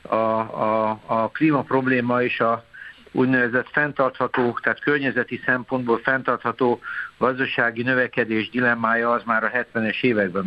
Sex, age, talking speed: male, 60-79, 120 wpm